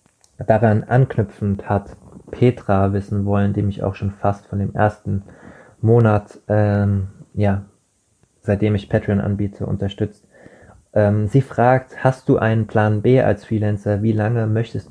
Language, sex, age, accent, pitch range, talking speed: German, male, 20-39, German, 100-115 Hz, 140 wpm